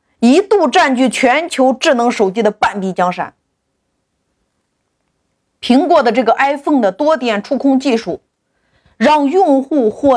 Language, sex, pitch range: Chinese, female, 235-345 Hz